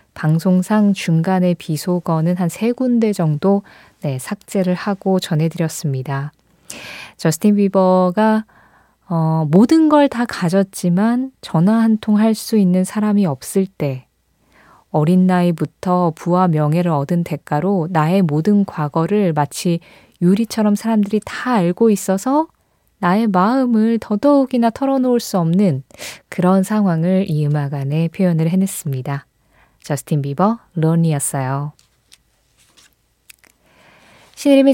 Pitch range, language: 165-220 Hz, Korean